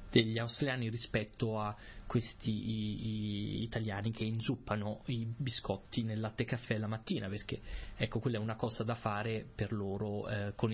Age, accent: 20-39, native